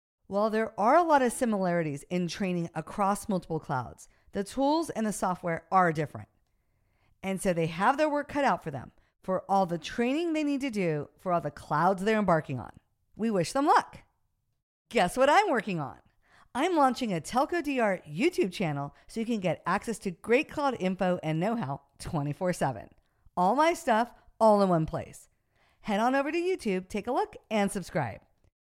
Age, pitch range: 50-69, 165-235 Hz